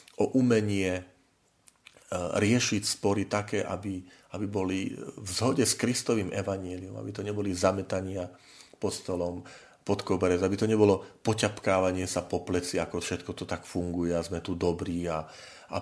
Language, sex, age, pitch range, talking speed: Slovak, male, 40-59, 85-105 Hz, 150 wpm